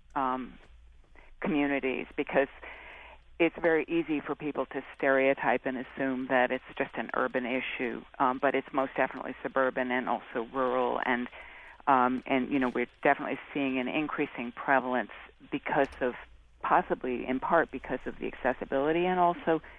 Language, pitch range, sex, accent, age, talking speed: English, 130-150 Hz, female, American, 50-69, 150 wpm